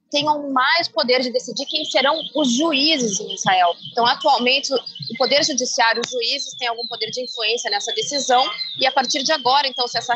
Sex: female